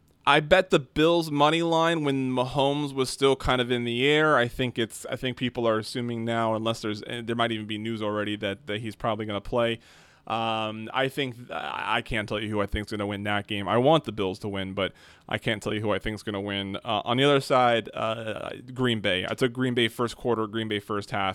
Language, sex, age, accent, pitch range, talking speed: English, male, 20-39, American, 105-125 Hz, 255 wpm